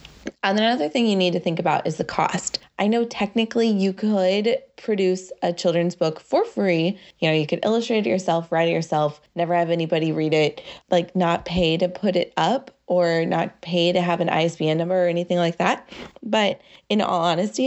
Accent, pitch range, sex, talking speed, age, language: American, 175-205 Hz, female, 205 wpm, 20-39, English